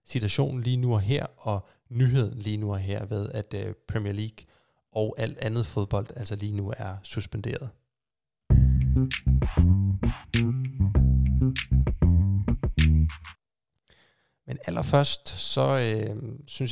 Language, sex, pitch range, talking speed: Danish, male, 105-130 Hz, 110 wpm